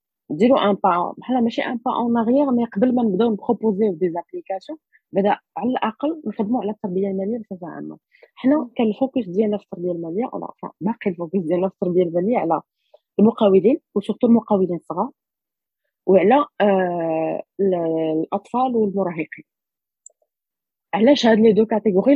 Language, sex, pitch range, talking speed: Arabic, female, 185-240 Hz, 145 wpm